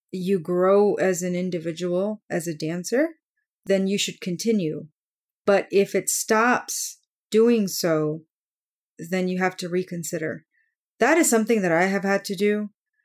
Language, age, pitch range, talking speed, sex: English, 30-49, 185-225 Hz, 145 wpm, female